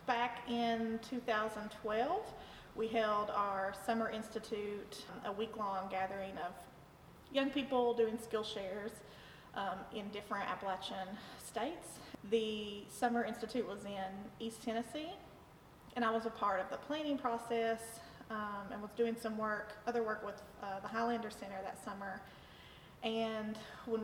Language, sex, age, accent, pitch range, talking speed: English, female, 30-49, American, 205-235 Hz, 135 wpm